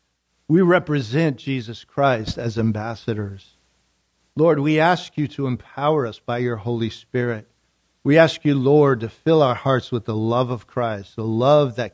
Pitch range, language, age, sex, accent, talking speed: 100-140 Hz, English, 50-69, male, American, 165 wpm